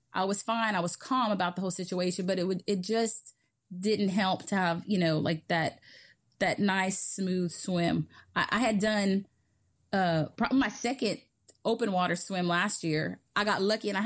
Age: 20-39